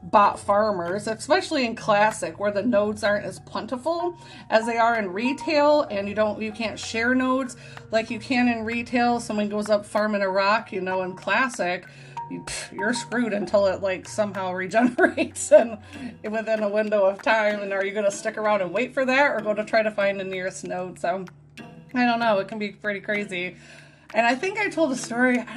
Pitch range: 195-260 Hz